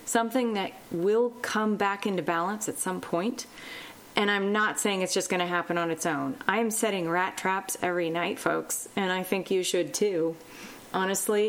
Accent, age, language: American, 30-49, English